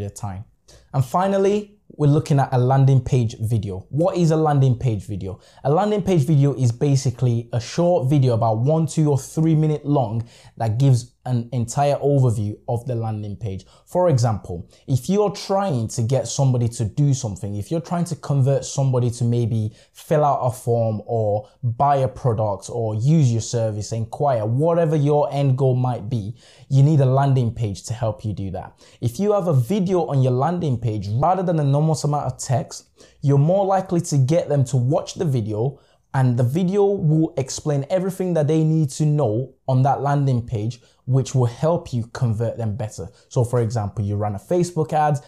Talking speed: 195 wpm